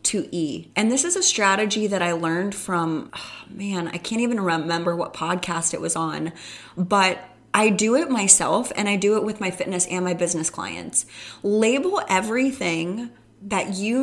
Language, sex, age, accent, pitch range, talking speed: English, female, 20-39, American, 175-225 Hz, 180 wpm